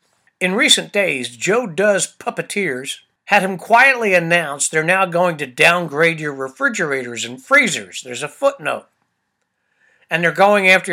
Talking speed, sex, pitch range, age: 145 wpm, male, 165-215 Hz, 60-79